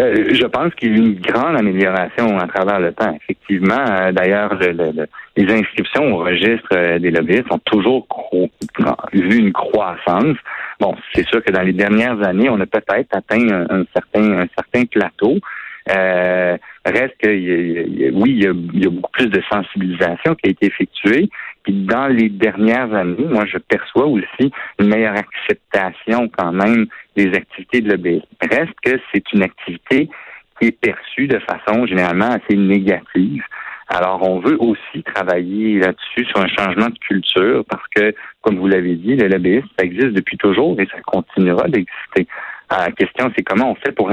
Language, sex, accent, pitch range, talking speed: French, male, French, 90-110 Hz, 170 wpm